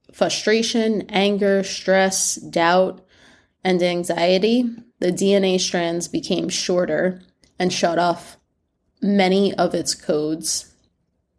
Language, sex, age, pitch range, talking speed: English, female, 20-39, 170-205 Hz, 95 wpm